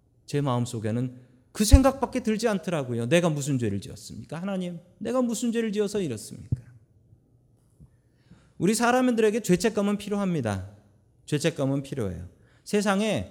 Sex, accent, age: male, native, 40-59